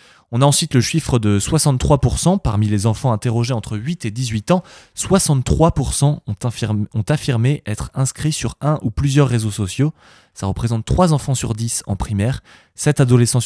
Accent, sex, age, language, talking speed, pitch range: French, male, 20-39, French, 175 wpm, 105-135 Hz